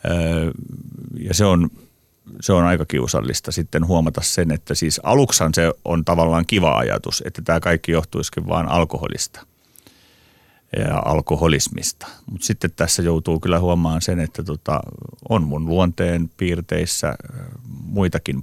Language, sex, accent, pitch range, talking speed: Finnish, male, native, 80-90 Hz, 130 wpm